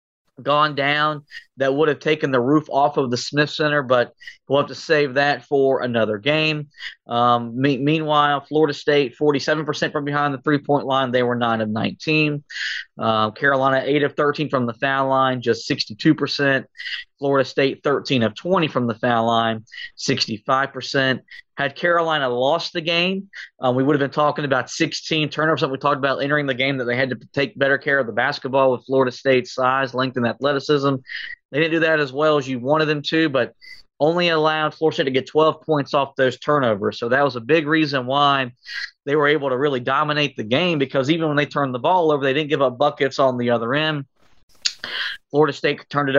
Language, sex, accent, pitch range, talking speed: English, male, American, 130-150 Hz, 200 wpm